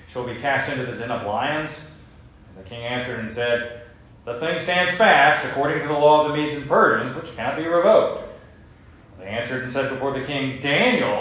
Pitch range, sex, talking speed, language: 110-150 Hz, male, 215 wpm, English